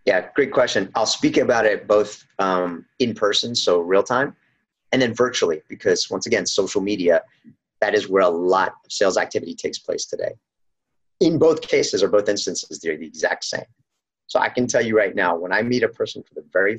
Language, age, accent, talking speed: English, 30-49, American, 205 wpm